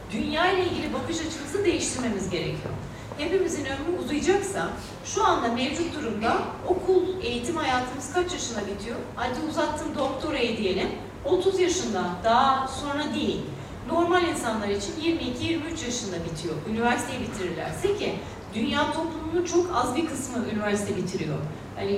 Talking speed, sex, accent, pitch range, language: 130 wpm, female, native, 220-285 Hz, Turkish